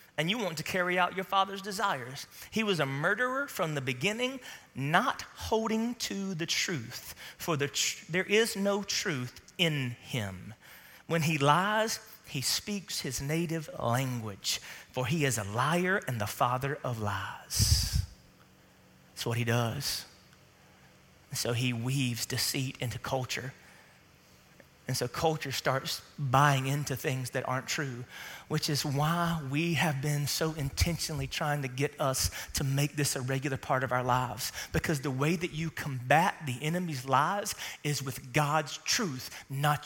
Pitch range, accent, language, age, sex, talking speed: 125-170 Hz, American, English, 30-49, male, 150 wpm